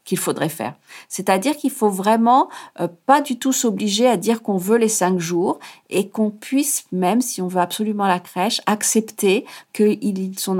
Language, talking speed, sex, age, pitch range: French, 185 wpm, female, 50-69, 185-225 Hz